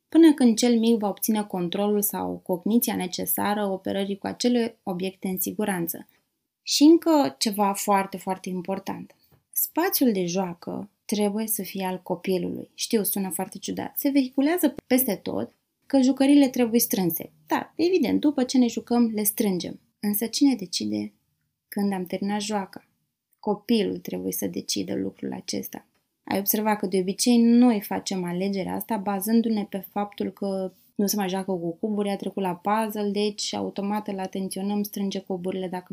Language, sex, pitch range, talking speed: Romanian, female, 185-230 Hz, 155 wpm